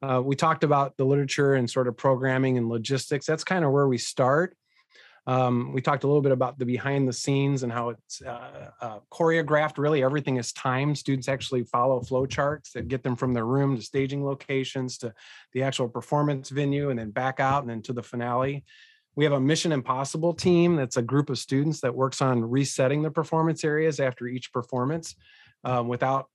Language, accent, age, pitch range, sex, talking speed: English, American, 30-49, 125-150 Hz, male, 205 wpm